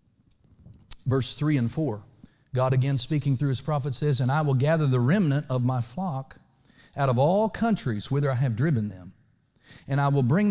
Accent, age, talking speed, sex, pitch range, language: American, 40-59, 190 wpm, male, 125-175 Hz, English